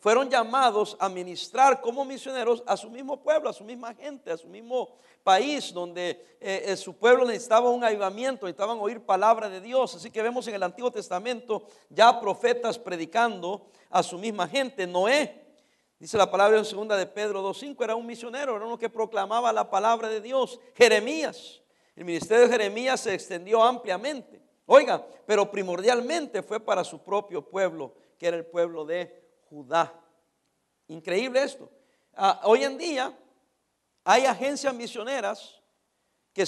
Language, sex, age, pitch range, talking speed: English, male, 60-79, 190-260 Hz, 160 wpm